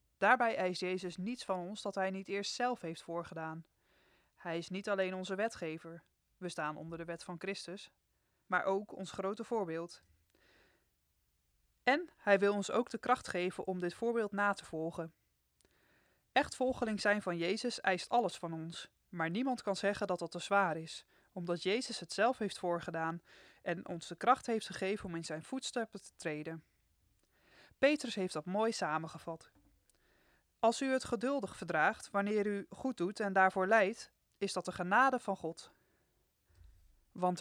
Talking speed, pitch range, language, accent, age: 170 wpm, 170-215 Hz, Dutch, Dutch, 20-39